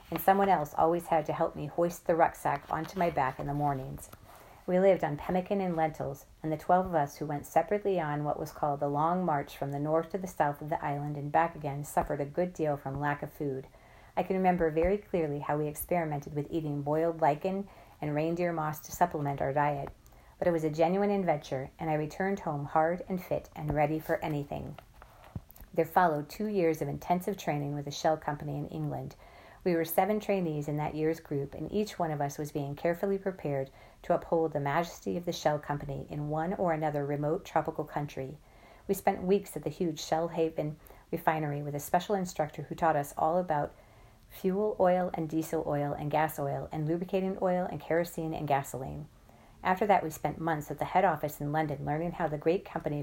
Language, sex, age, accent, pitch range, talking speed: English, female, 40-59, American, 145-175 Hz, 215 wpm